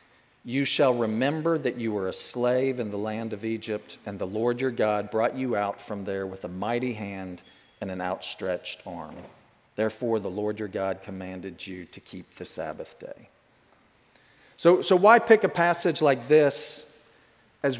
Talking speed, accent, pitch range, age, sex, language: 175 wpm, American, 115-170 Hz, 40-59, male, English